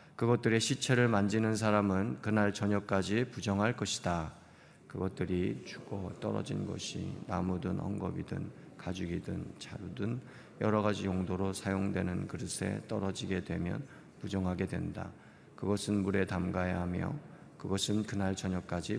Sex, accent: male, native